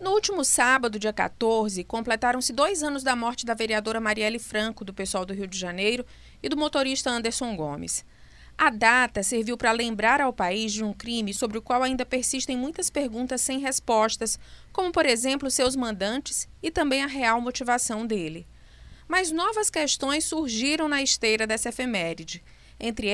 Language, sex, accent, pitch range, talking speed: Portuguese, female, Brazilian, 215-270 Hz, 165 wpm